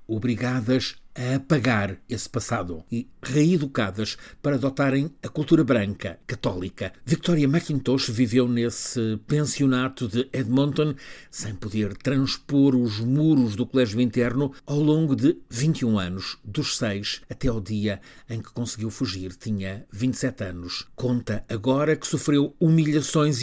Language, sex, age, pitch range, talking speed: Portuguese, male, 50-69, 110-135 Hz, 130 wpm